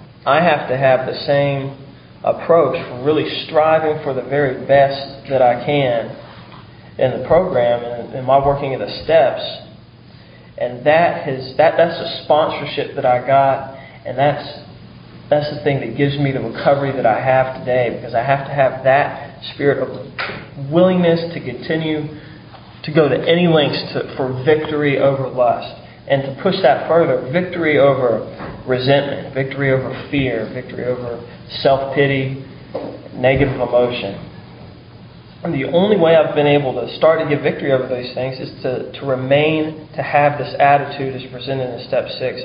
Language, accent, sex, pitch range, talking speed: English, American, male, 125-150 Hz, 155 wpm